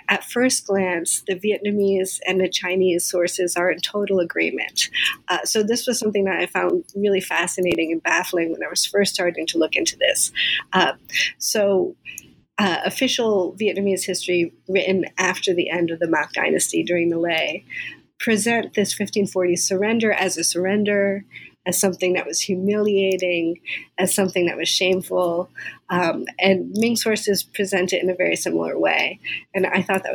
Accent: American